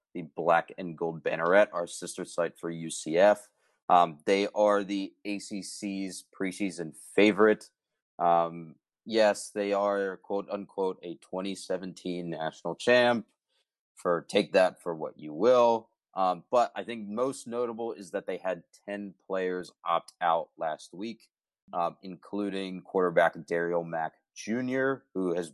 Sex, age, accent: male, 30-49, American